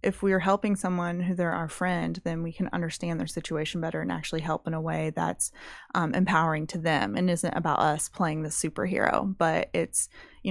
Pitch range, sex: 160-185 Hz, female